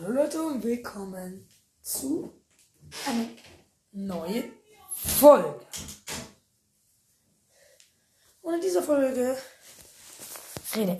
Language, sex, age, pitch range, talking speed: German, female, 20-39, 205-275 Hz, 70 wpm